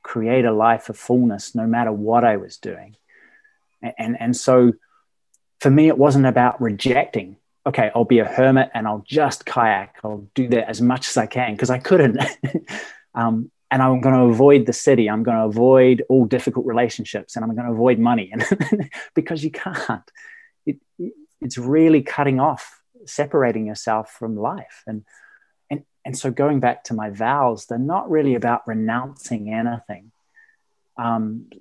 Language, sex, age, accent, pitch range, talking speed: English, male, 20-39, Australian, 115-140 Hz, 170 wpm